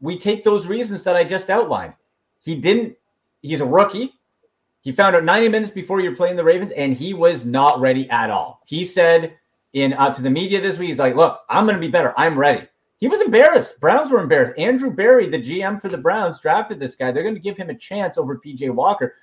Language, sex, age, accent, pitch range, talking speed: English, male, 30-49, American, 165-260 Hz, 235 wpm